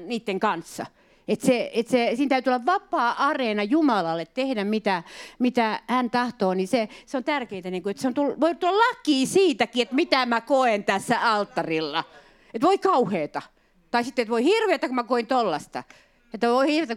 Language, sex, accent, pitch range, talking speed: Finnish, female, native, 185-255 Hz, 175 wpm